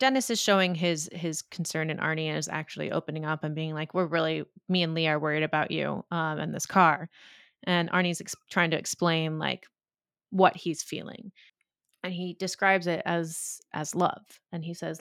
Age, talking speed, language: 30-49, 190 wpm, English